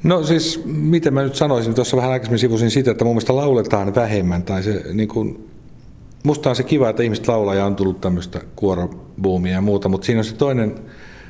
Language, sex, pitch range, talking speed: Finnish, male, 95-120 Hz, 205 wpm